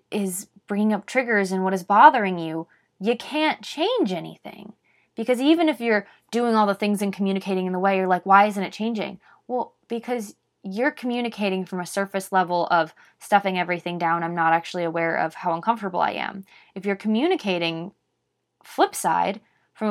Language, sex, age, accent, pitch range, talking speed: English, female, 20-39, American, 175-215 Hz, 180 wpm